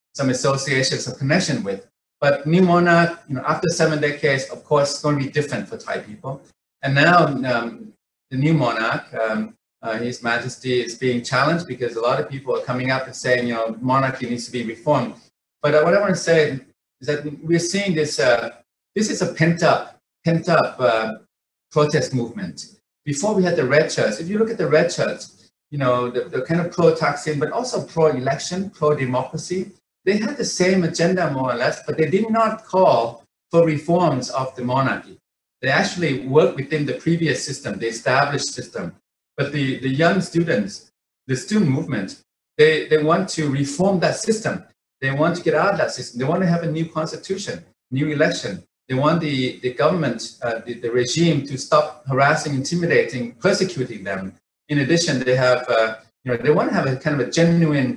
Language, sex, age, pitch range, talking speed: English, male, 30-49, 130-170 Hz, 195 wpm